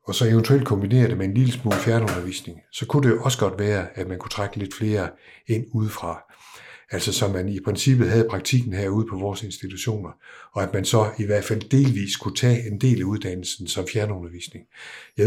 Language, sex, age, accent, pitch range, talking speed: Danish, male, 60-79, native, 95-120 Hz, 210 wpm